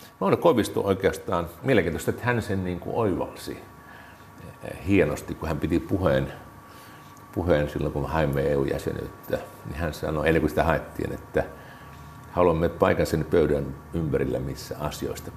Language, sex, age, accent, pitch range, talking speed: Finnish, male, 50-69, native, 75-105 Hz, 135 wpm